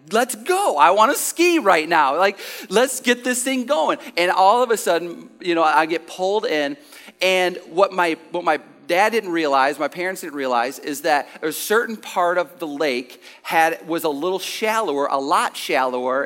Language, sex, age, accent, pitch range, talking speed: English, male, 40-59, American, 160-215 Hz, 195 wpm